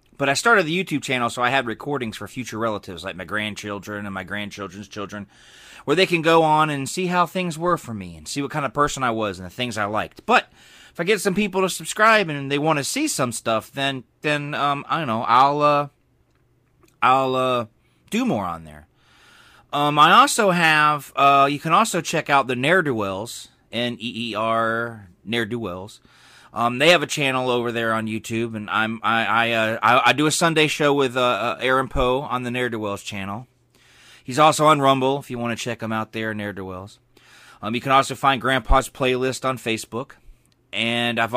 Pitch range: 110-140 Hz